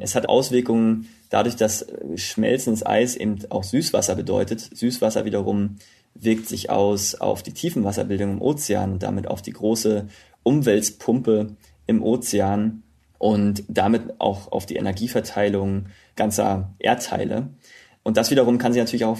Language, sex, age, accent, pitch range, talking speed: German, male, 30-49, German, 100-115 Hz, 140 wpm